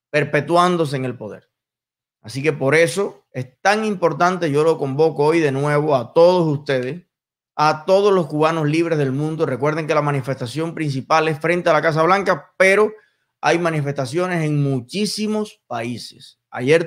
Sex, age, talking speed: male, 20-39, 160 wpm